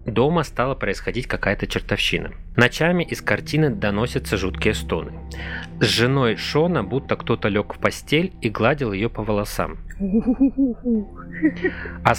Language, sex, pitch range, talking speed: Russian, male, 95-130 Hz, 125 wpm